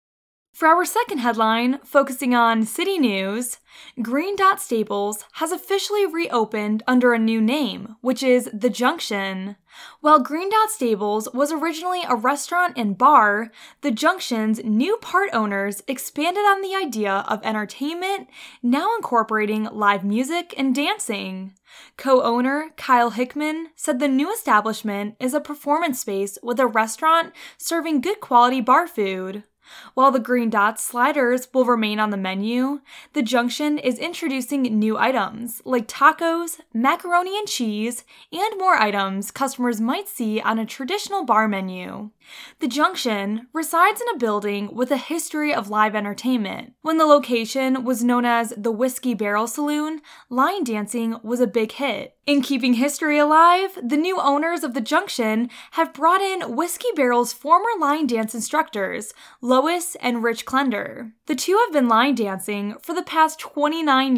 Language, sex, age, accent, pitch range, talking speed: English, female, 10-29, American, 225-315 Hz, 150 wpm